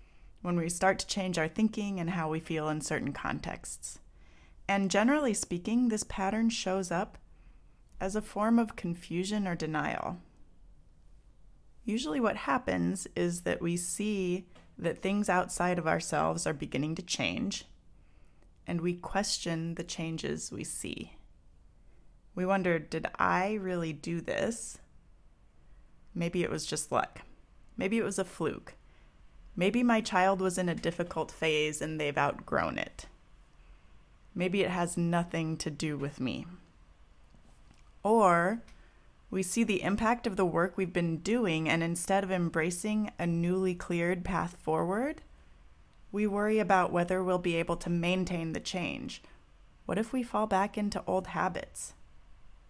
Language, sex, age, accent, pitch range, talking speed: English, female, 30-49, American, 160-195 Hz, 145 wpm